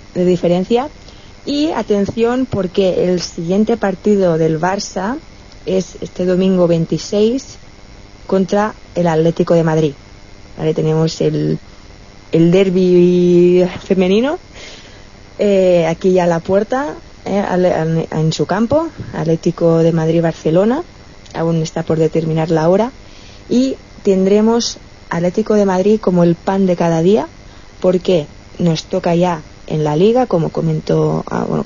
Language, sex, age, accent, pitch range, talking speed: Spanish, female, 20-39, Spanish, 160-195 Hz, 120 wpm